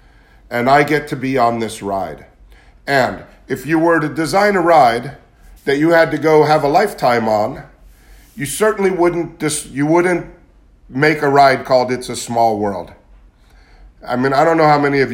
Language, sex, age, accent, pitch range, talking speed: English, male, 50-69, American, 115-150 Hz, 185 wpm